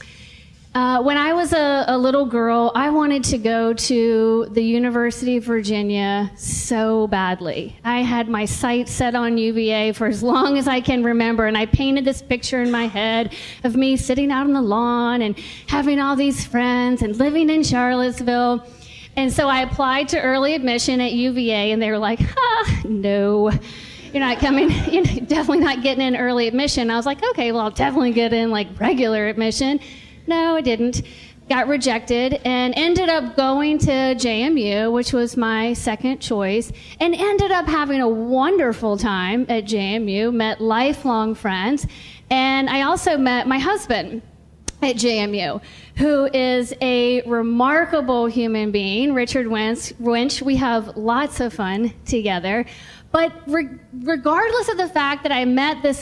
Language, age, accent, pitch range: English, 40-59, American, 225-275 Hz